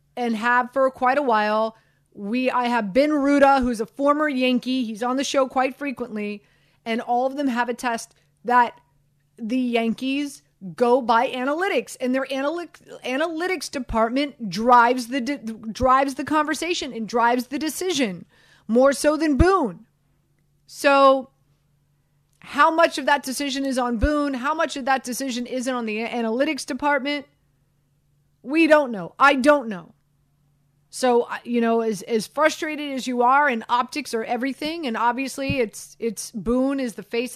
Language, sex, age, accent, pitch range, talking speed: English, female, 30-49, American, 185-265 Hz, 160 wpm